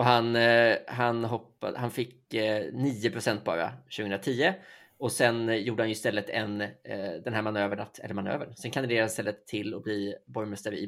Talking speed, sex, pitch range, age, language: 165 wpm, male, 105-125 Hz, 20-39, Swedish